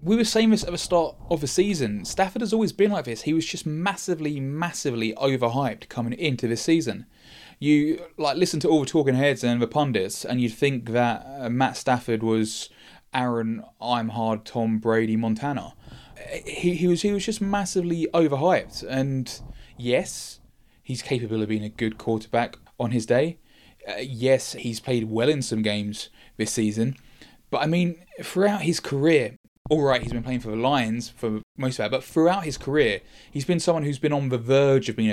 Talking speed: 195 wpm